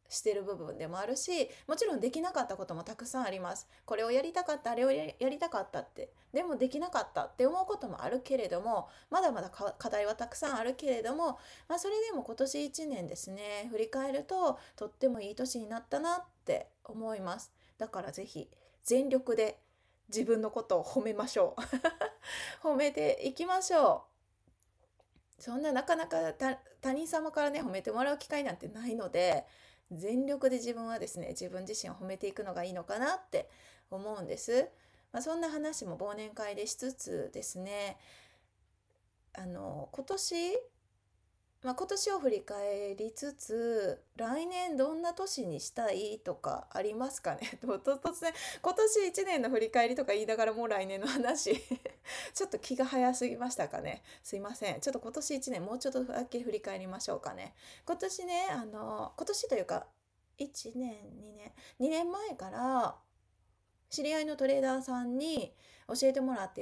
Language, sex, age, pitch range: Japanese, female, 20-39, 215-305 Hz